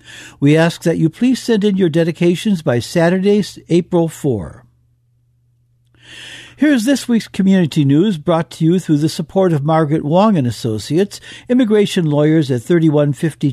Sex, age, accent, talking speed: male, 60-79, American, 150 wpm